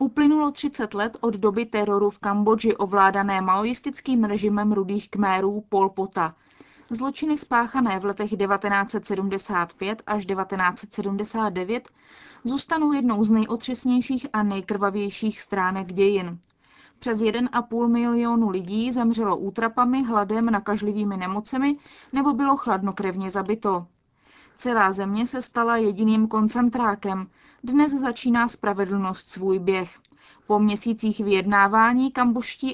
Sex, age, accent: female, 20-39, native